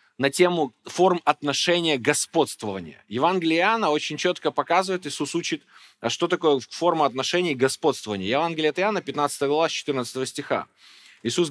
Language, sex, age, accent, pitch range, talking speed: Russian, male, 20-39, native, 130-170 Hz, 125 wpm